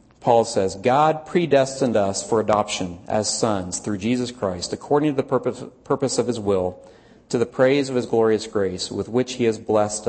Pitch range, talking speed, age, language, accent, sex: 105-135 Hz, 185 wpm, 40-59, English, American, male